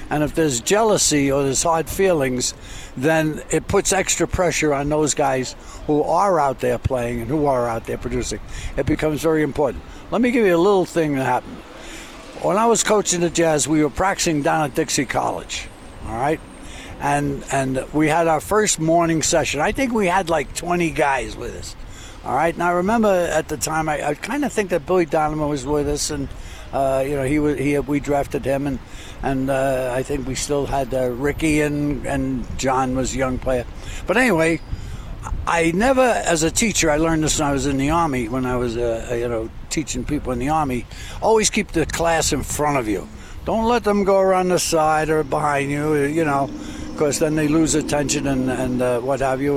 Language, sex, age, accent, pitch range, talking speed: English, male, 60-79, American, 135-165 Hz, 215 wpm